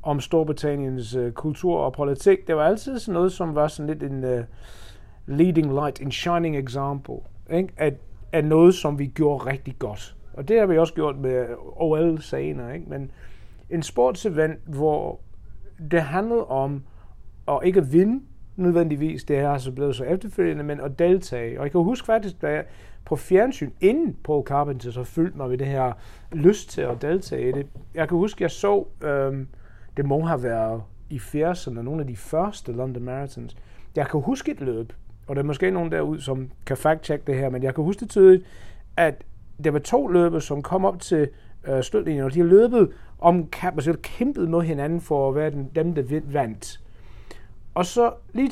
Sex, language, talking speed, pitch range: male, Danish, 190 wpm, 130-180 Hz